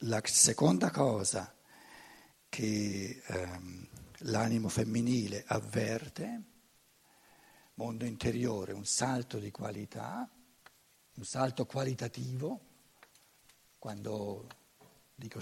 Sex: male